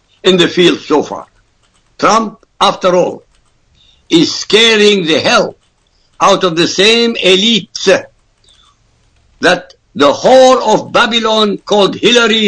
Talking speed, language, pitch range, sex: 115 wpm, English, 180-225 Hz, male